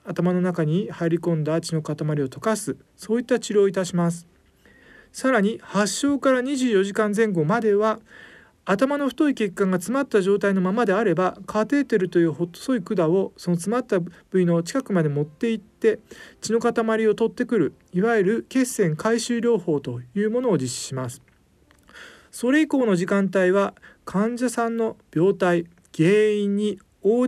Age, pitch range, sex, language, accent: 40-59, 170-235 Hz, male, Japanese, native